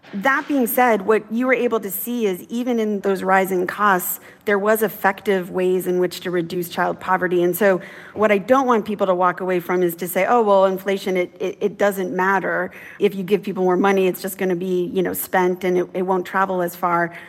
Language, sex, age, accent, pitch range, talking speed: English, female, 30-49, American, 180-205 Hz, 235 wpm